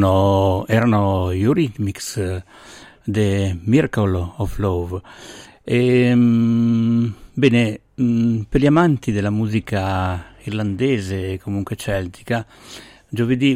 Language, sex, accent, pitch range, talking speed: Italian, male, native, 100-125 Hz, 85 wpm